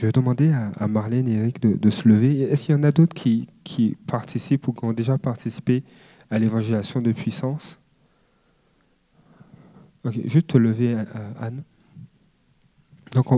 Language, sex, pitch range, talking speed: French, male, 125-155 Hz, 150 wpm